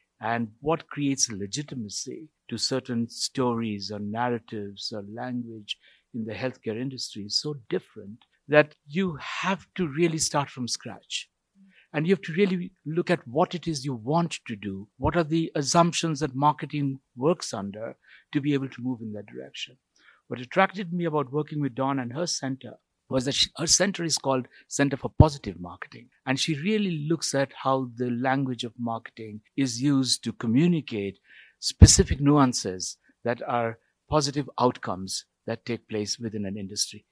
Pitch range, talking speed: 115-150 Hz, 165 wpm